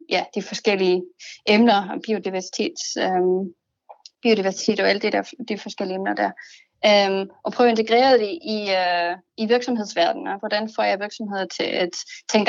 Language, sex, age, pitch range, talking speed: Danish, female, 30-49, 200-260 Hz, 170 wpm